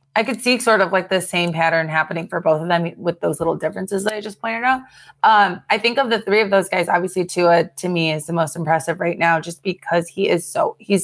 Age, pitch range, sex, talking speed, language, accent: 20-39, 165-195 Hz, female, 260 wpm, English, American